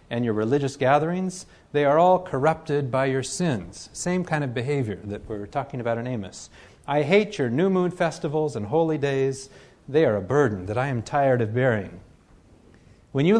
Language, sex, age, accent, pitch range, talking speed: English, male, 40-59, American, 115-165 Hz, 190 wpm